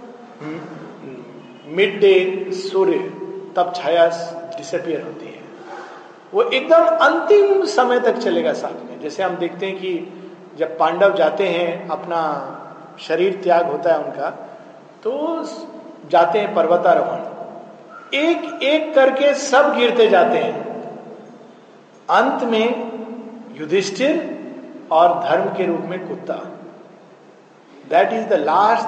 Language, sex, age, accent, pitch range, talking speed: Hindi, male, 50-69, native, 170-250 Hz, 115 wpm